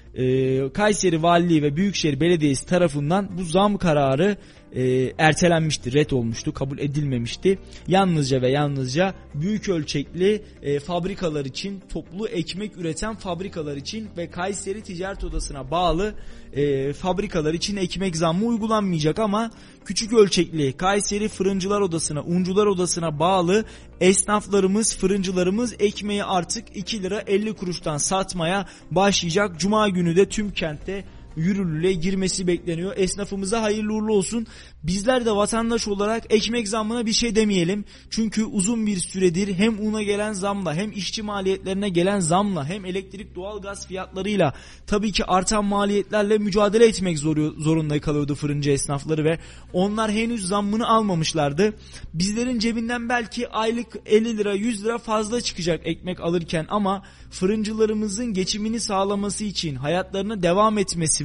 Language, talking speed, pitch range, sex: Turkish, 130 wpm, 170-210 Hz, male